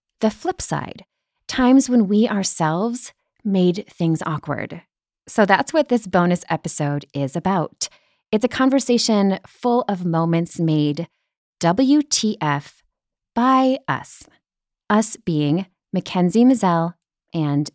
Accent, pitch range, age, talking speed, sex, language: American, 155-225 Hz, 20-39, 110 wpm, female, English